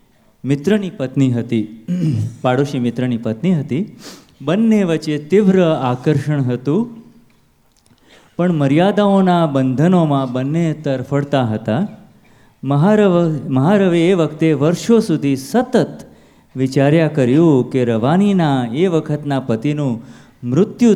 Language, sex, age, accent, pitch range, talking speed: Gujarati, male, 30-49, native, 125-165 Hz, 95 wpm